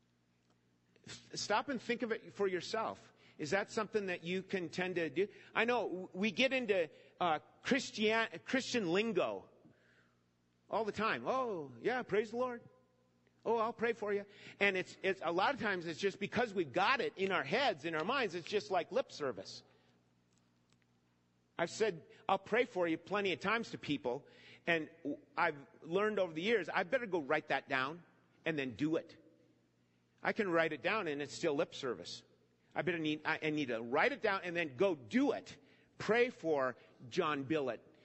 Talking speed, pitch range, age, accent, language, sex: 185 wpm, 130-215 Hz, 50-69, American, English, male